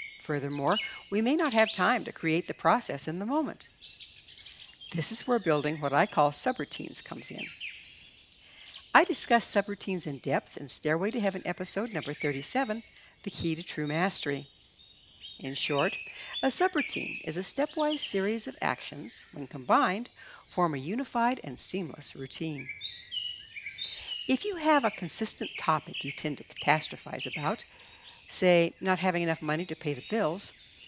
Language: English